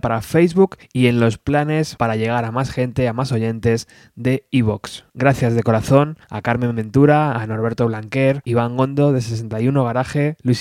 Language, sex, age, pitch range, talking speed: Spanish, male, 20-39, 120-145 Hz, 175 wpm